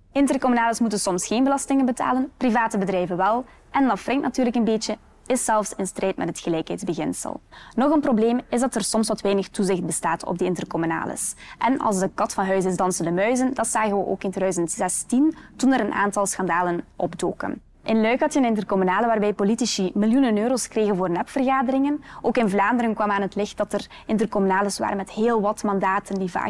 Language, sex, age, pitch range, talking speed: Dutch, female, 20-39, 190-240 Hz, 195 wpm